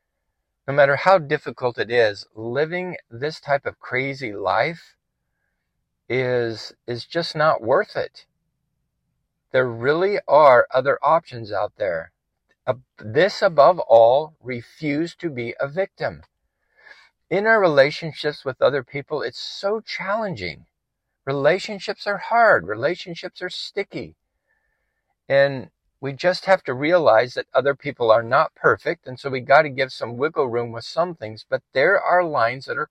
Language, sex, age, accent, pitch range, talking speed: English, male, 50-69, American, 125-175 Hz, 145 wpm